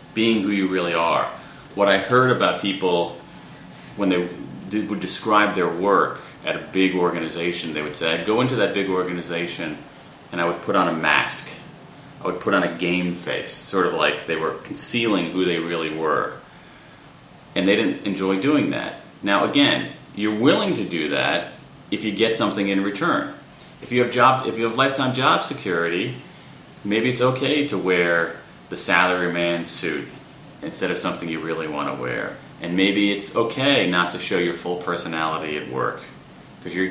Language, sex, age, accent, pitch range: Japanese, male, 30-49, American, 85-115 Hz